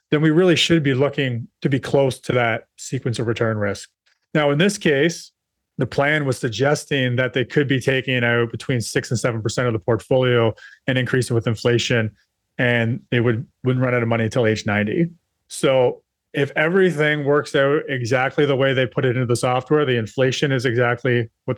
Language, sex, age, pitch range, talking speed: English, male, 30-49, 120-145 Hz, 190 wpm